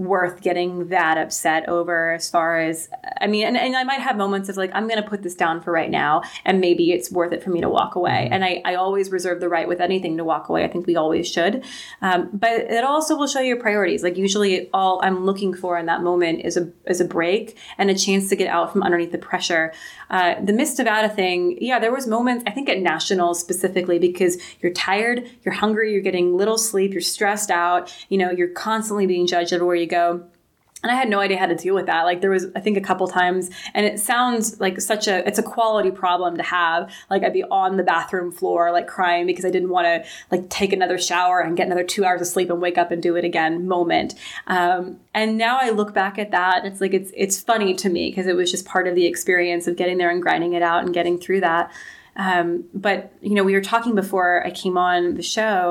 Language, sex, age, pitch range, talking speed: English, female, 20-39, 175-200 Hz, 255 wpm